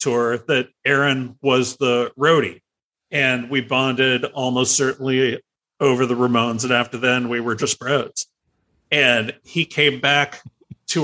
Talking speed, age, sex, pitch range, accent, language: 140 wpm, 40-59, male, 115-135 Hz, American, English